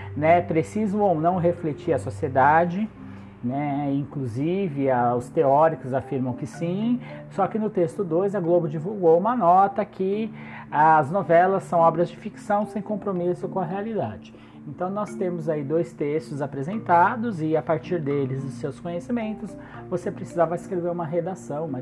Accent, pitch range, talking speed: Brazilian, 140-200 Hz, 155 wpm